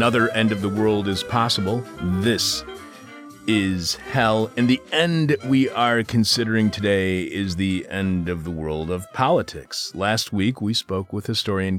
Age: 40-59